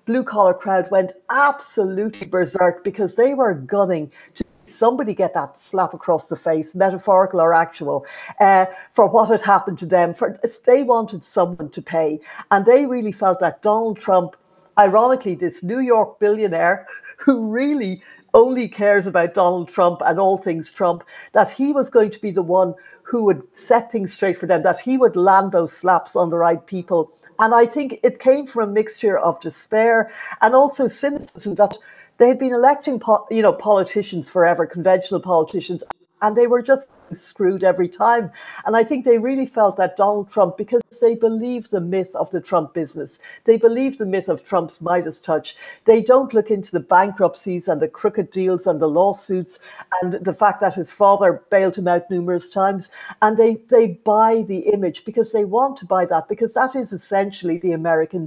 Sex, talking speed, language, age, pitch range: female, 185 wpm, English, 60-79, 180-230 Hz